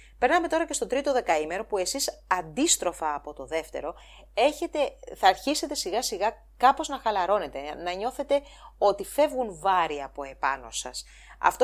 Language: English